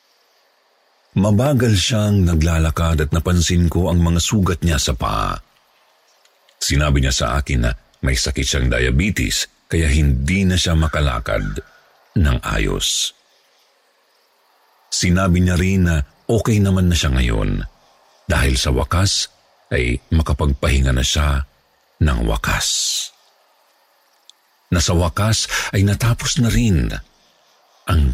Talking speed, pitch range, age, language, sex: 115 wpm, 75-90 Hz, 50-69, Filipino, male